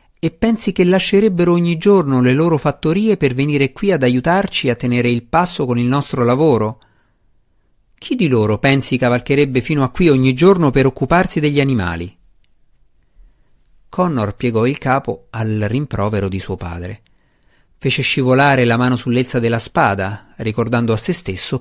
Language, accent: Italian, native